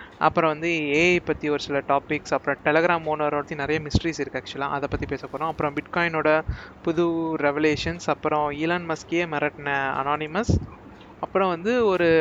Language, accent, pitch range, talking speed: Tamil, native, 140-165 Hz, 150 wpm